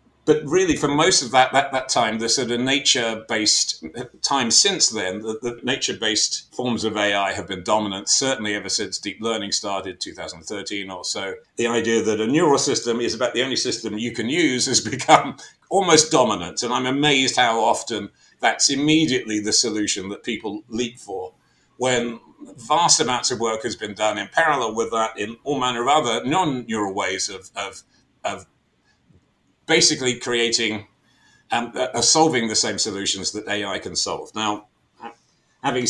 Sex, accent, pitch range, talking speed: male, British, 105-135 Hz, 170 wpm